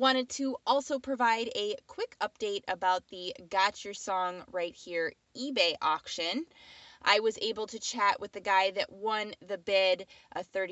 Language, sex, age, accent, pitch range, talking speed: English, female, 20-39, American, 180-235 Hz, 160 wpm